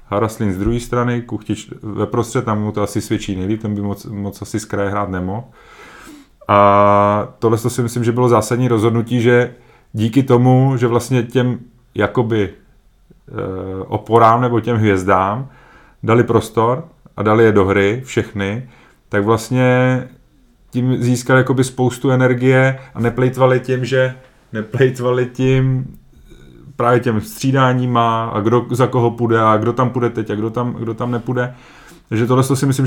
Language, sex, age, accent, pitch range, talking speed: Czech, male, 30-49, native, 110-130 Hz, 160 wpm